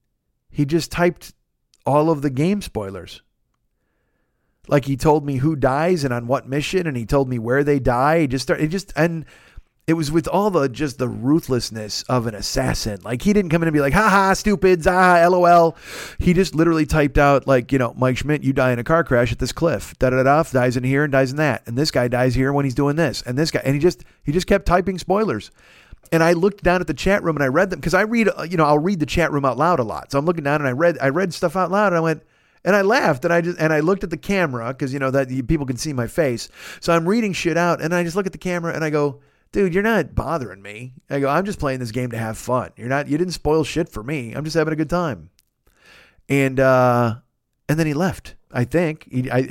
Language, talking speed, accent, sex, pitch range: English, 265 wpm, American, male, 130-170 Hz